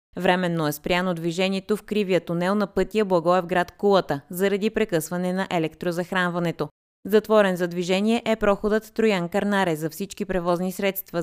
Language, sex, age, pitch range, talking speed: Bulgarian, female, 20-39, 175-210 Hz, 130 wpm